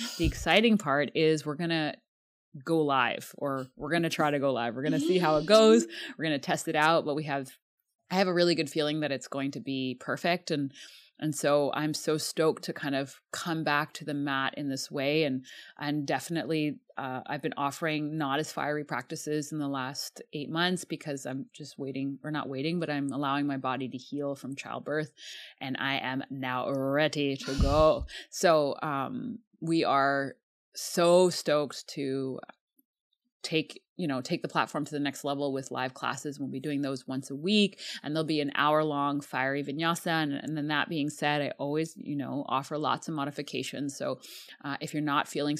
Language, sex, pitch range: English, female, 135-160 Hz